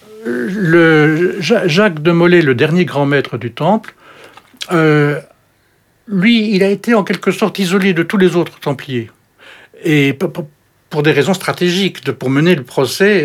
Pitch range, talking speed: 140-190 Hz, 150 wpm